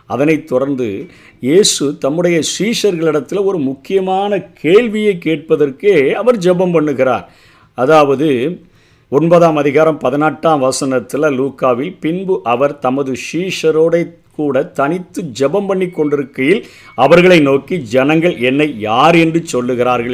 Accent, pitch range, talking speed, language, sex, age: native, 130-170 Hz, 100 wpm, Tamil, male, 50-69